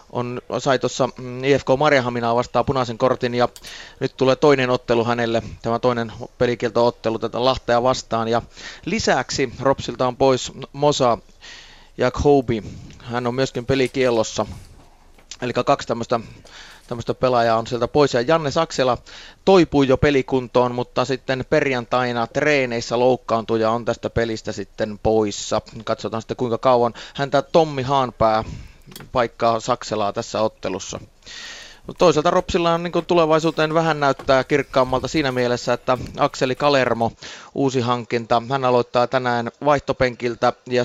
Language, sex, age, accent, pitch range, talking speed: Finnish, male, 30-49, native, 120-135 Hz, 130 wpm